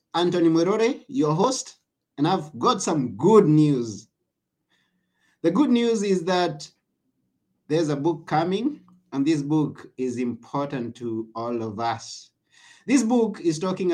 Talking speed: 140 wpm